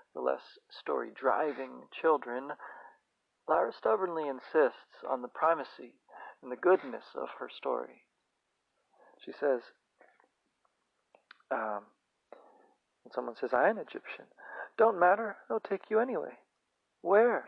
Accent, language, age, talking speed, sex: American, English, 40-59, 110 wpm, male